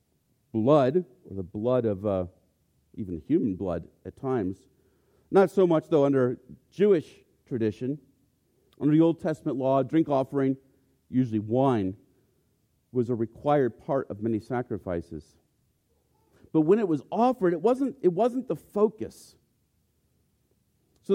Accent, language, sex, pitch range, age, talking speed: American, English, male, 125-190 Hz, 50-69, 130 wpm